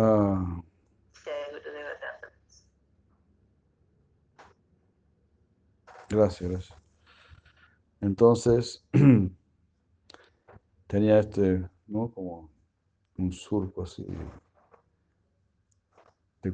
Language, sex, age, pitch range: Spanish, male, 60-79, 90-110 Hz